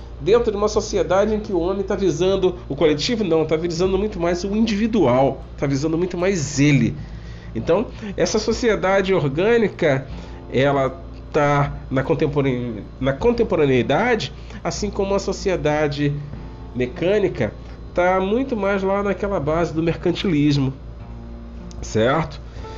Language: Portuguese